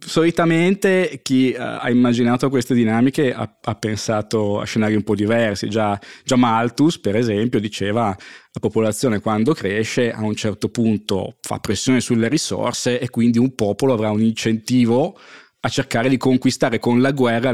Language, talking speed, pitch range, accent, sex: Italian, 155 wpm, 110-130 Hz, native, male